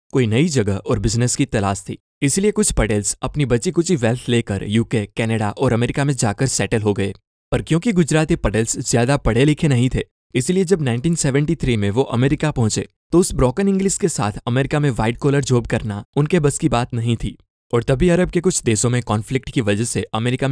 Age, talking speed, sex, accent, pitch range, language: 20-39, 210 wpm, male, native, 110-145 Hz, Hindi